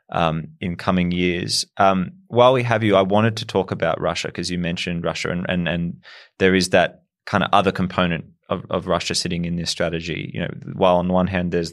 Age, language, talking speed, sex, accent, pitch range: 20-39, English, 220 wpm, male, Australian, 85-100 Hz